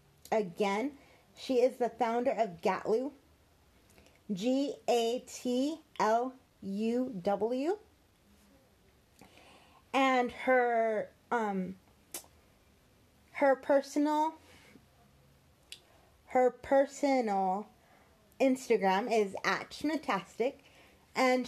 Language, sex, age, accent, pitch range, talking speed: English, female, 30-49, American, 210-260 Hz, 55 wpm